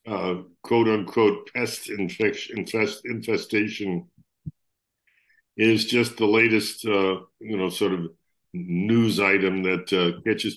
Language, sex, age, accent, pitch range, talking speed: English, male, 60-79, American, 100-120 Hz, 115 wpm